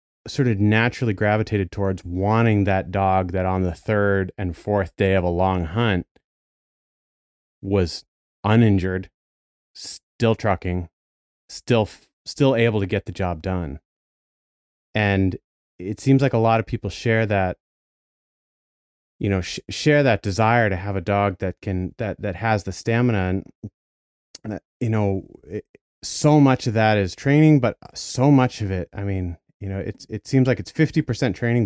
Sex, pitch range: male, 95-115 Hz